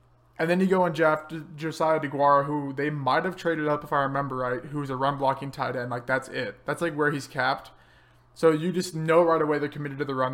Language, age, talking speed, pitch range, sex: English, 20-39, 240 wpm, 135-155 Hz, male